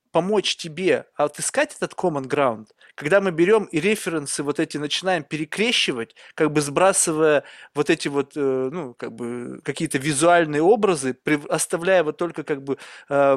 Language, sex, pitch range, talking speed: Russian, male, 150-190 Hz, 145 wpm